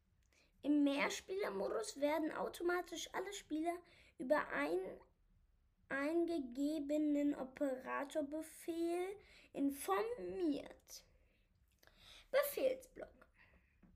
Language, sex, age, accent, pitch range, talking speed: German, female, 10-29, German, 265-330 Hz, 50 wpm